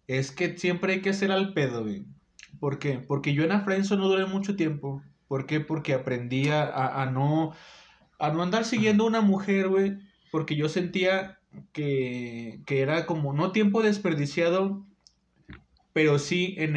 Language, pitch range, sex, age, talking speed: Spanish, 130-165 Hz, male, 30-49, 165 wpm